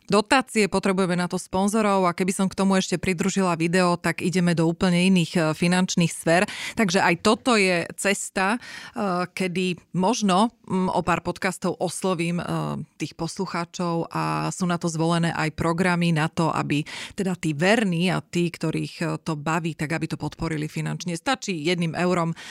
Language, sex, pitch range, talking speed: Slovak, female, 160-195 Hz, 155 wpm